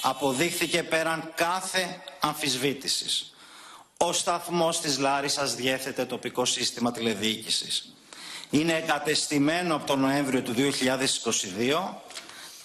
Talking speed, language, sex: 90 wpm, Greek, male